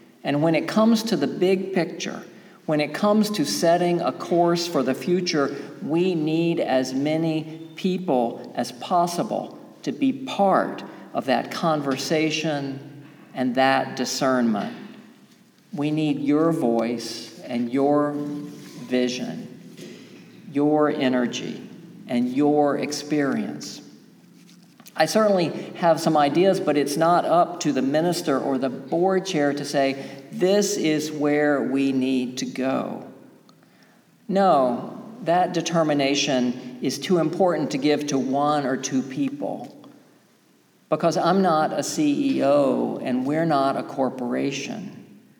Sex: male